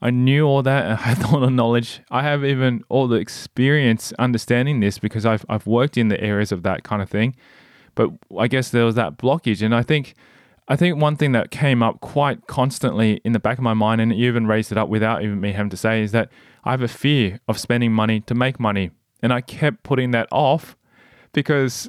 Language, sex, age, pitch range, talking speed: English, male, 20-39, 105-125 Hz, 230 wpm